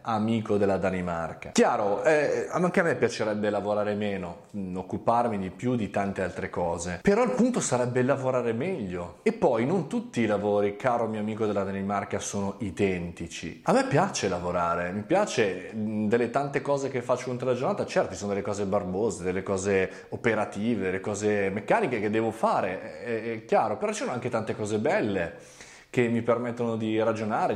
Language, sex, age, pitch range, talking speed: Italian, male, 20-39, 100-135 Hz, 175 wpm